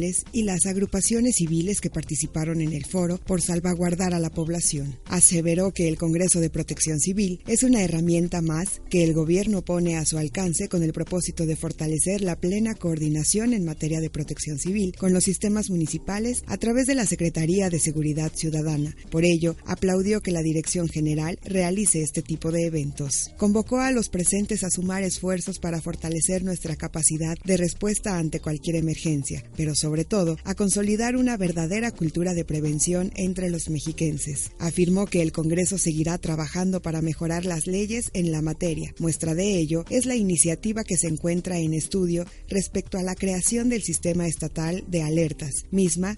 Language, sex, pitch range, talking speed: Spanish, female, 160-190 Hz, 175 wpm